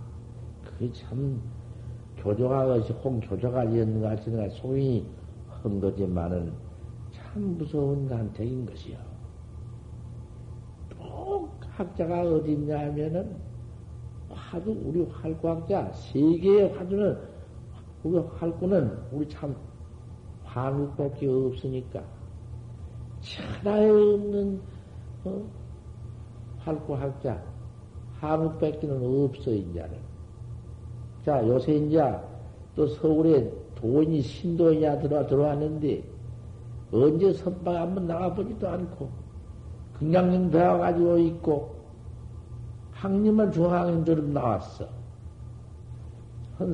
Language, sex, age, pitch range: Korean, male, 50-69, 110-150 Hz